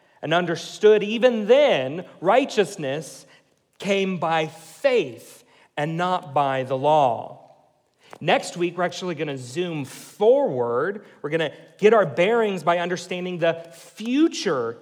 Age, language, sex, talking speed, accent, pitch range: 40-59, English, male, 115 wpm, American, 155-210 Hz